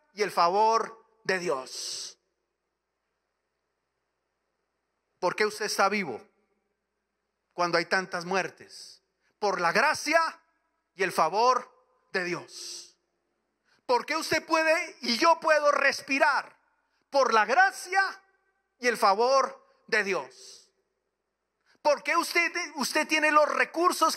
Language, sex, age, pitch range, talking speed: Spanish, male, 40-59, 190-290 Hz, 105 wpm